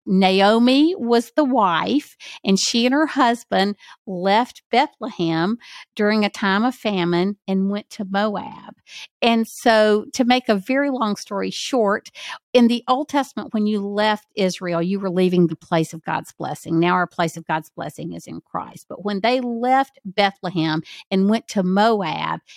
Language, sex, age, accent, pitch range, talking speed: English, female, 50-69, American, 185-230 Hz, 170 wpm